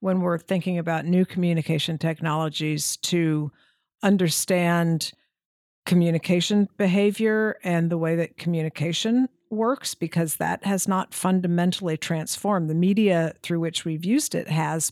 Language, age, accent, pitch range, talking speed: English, 50-69, American, 160-185 Hz, 125 wpm